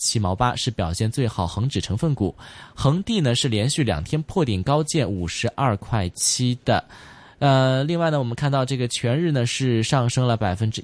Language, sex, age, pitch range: Chinese, male, 20-39, 105-140 Hz